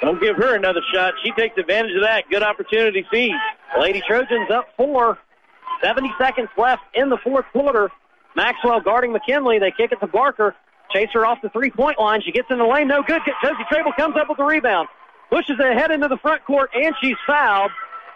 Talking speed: 210 wpm